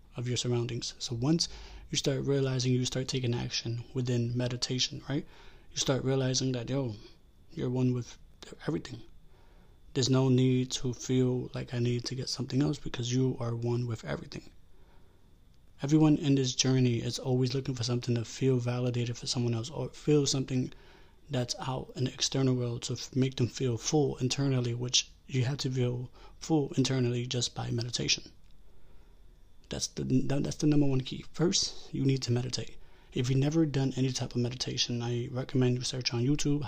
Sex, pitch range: male, 120-135 Hz